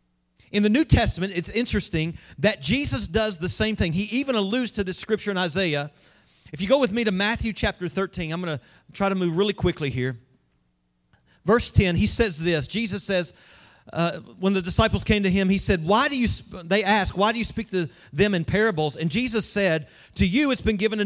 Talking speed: 220 wpm